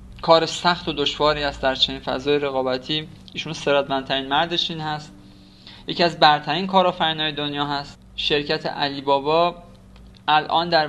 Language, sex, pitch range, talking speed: Persian, male, 135-165 Hz, 130 wpm